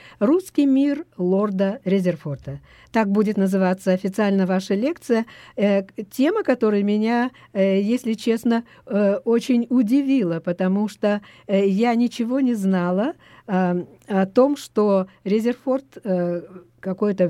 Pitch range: 185-235 Hz